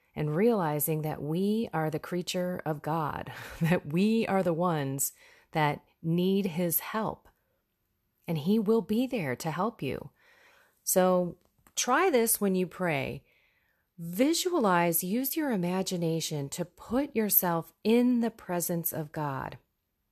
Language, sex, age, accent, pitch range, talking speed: English, female, 30-49, American, 155-200 Hz, 130 wpm